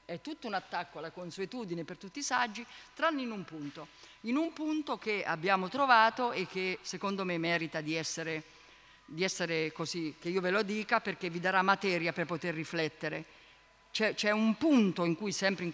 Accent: native